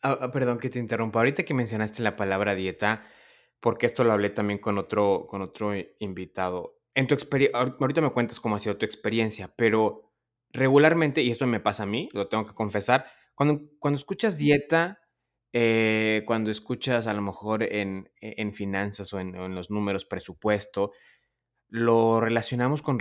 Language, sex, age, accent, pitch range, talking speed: Spanish, male, 20-39, Mexican, 105-130 Hz, 175 wpm